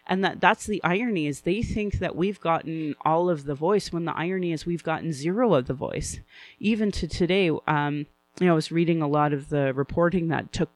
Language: English